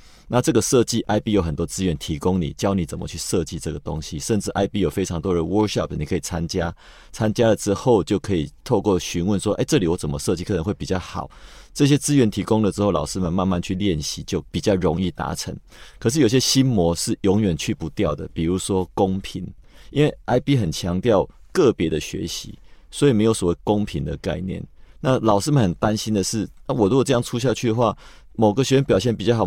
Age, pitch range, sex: 30-49, 85-115 Hz, male